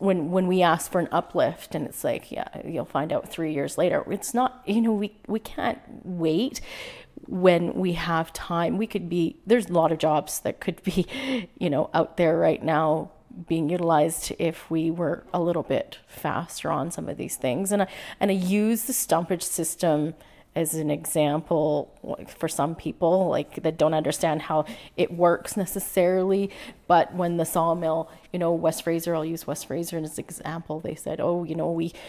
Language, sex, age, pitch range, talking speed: English, female, 30-49, 160-195 Hz, 195 wpm